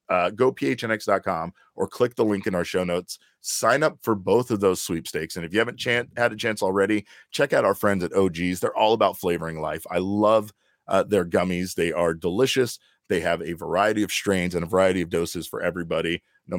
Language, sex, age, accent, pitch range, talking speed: English, male, 30-49, American, 90-110 Hz, 215 wpm